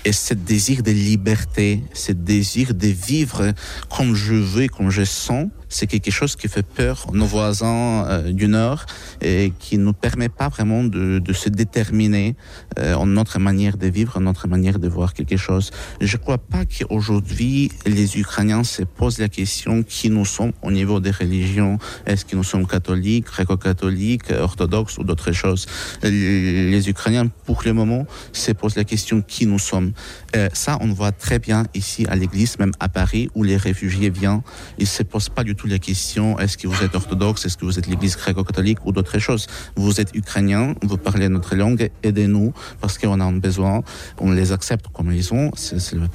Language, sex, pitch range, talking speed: French, male, 95-110 Hz, 195 wpm